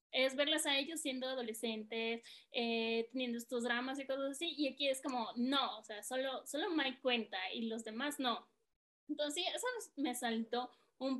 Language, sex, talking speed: Spanish, female, 180 wpm